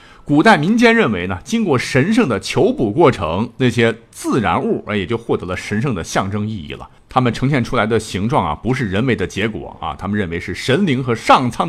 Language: Chinese